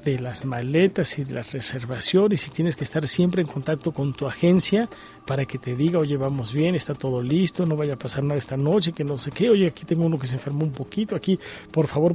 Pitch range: 140-175 Hz